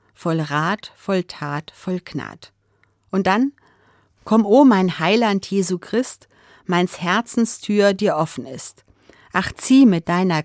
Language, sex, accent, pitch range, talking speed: German, female, German, 165-215 Hz, 140 wpm